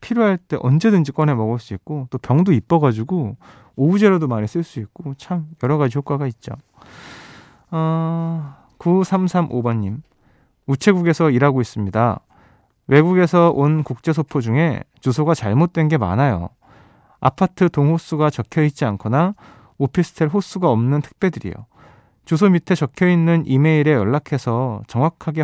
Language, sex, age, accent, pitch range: Korean, male, 20-39, native, 120-165 Hz